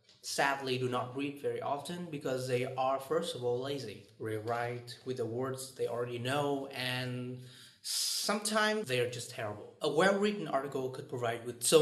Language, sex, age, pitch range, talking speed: Vietnamese, male, 30-49, 120-160 Hz, 170 wpm